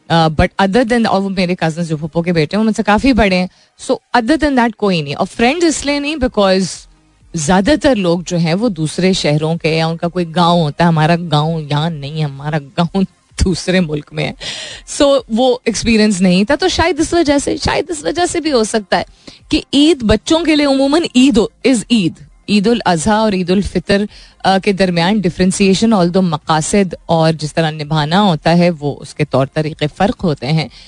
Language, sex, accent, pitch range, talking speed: Hindi, female, native, 165-240 Hz, 200 wpm